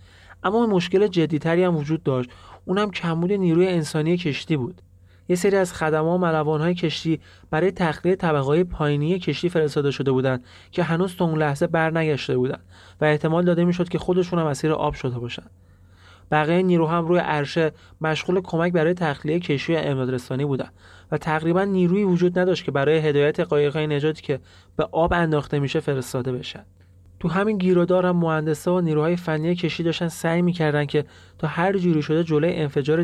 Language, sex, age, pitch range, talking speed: Persian, male, 30-49, 140-175 Hz, 170 wpm